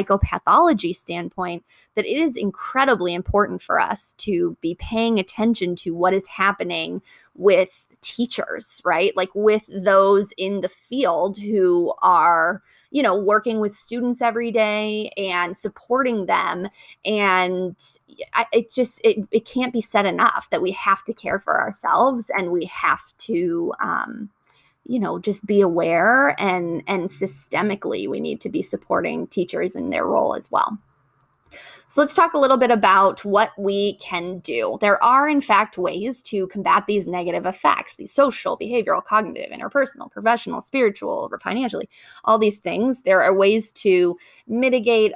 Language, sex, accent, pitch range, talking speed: English, female, American, 185-235 Hz, 155 wpm